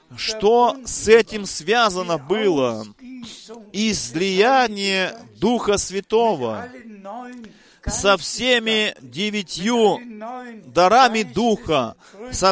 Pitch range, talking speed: 190-225 Hz, 65 wpm